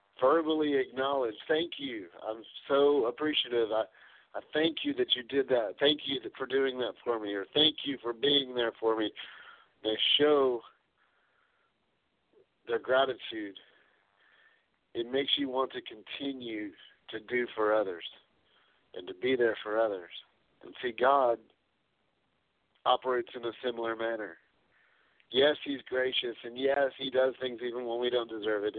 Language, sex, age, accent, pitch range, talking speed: English, male, 50-69, American, 110-135 Hz, 150 wpm